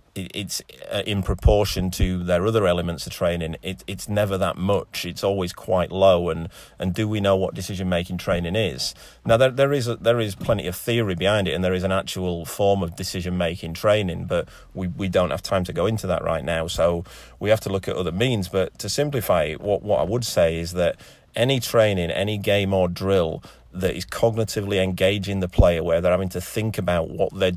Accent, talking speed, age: British, 205 wpm, 30-49